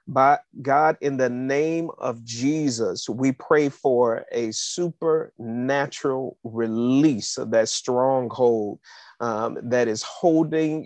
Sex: male